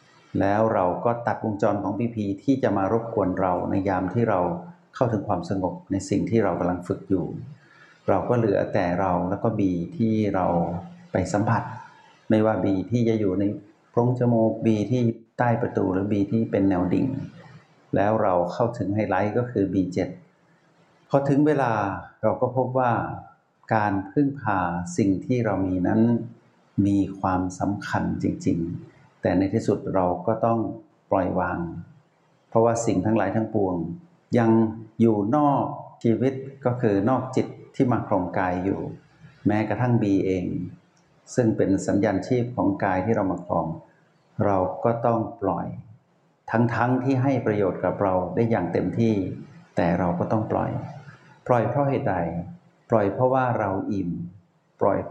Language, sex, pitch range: Thai, male, 95-120 Hz